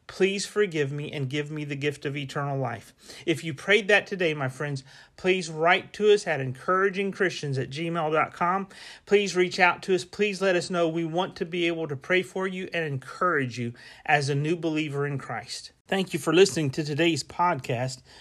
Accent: American